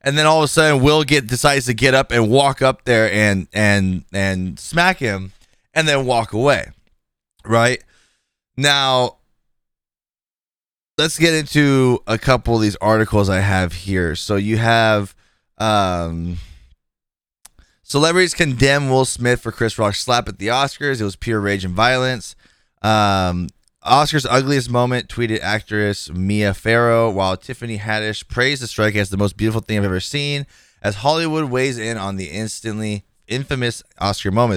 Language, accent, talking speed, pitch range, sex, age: English, American, 160 wpm, 100-130 Hz, male, 20-39